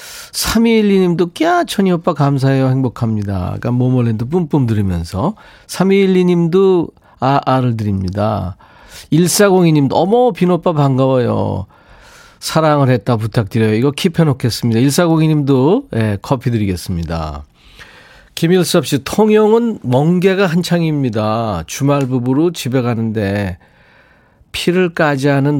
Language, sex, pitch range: Korean, male, 105-170 Hz